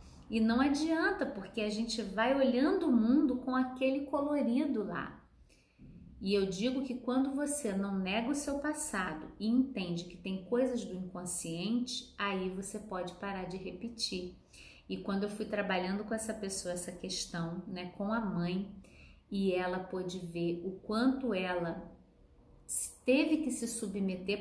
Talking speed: 155 wpm